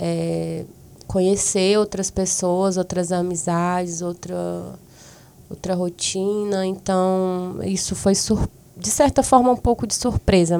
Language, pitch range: Portuguese, 175-200 Hz